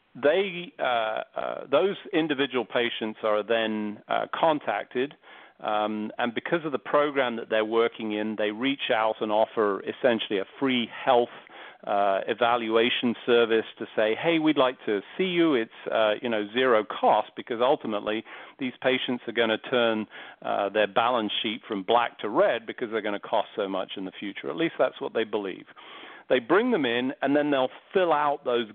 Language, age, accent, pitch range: English, 40-59, British, 110-140 Hz